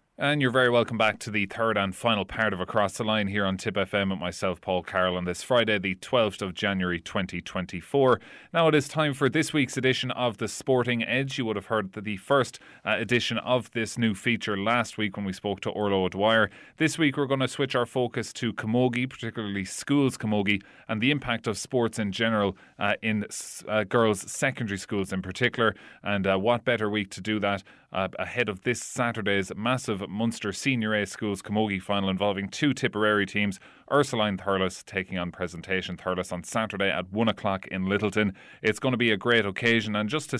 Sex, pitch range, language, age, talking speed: male, 100-120 Hz, English, 30-49, 205 wpm